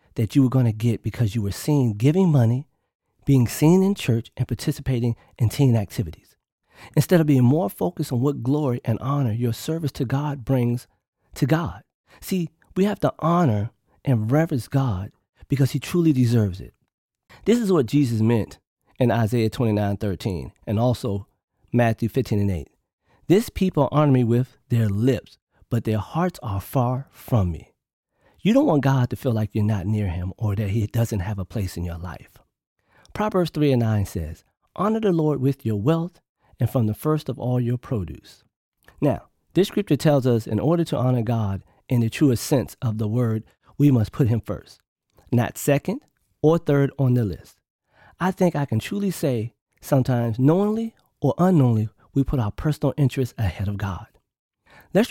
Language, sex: English, male